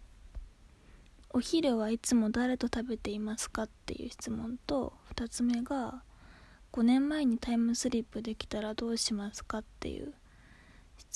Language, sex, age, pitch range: Japanese, female, 20-39, 205-245 Hz